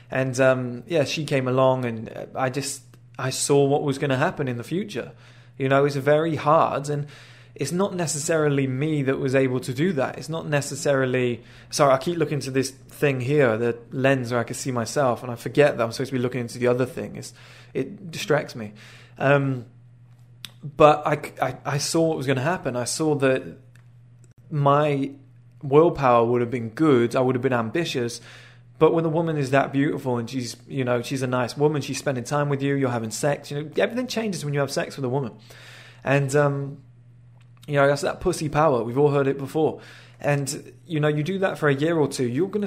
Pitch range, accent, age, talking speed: 125-145 Hz, British, 20-39, 215 wpm